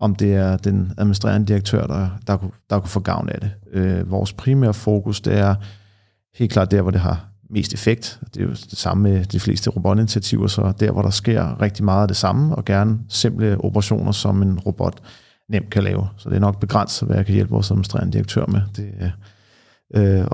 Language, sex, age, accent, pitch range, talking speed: Danish, male, 40-59, native, 100-110 Hz, 215 wpm